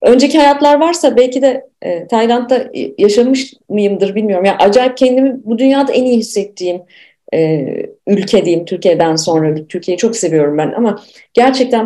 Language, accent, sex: Turkish, native, female